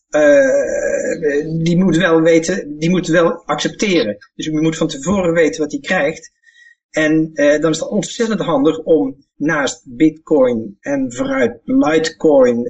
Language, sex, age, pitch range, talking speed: Dutch, male, 50-69, 160-270 Hz, 145 wpm